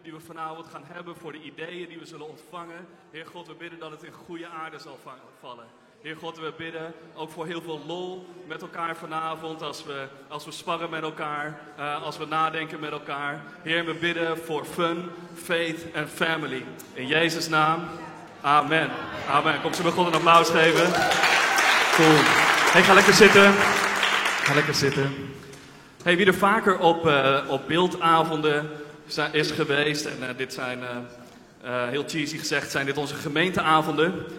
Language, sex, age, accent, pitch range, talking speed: Dutch, male, 20-39, Dutch, 145-170 Hz, 175 wpm